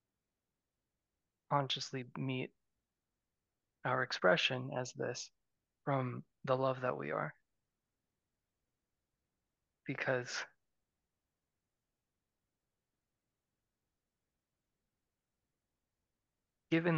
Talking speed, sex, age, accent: 50 wpm, male, 30-49, American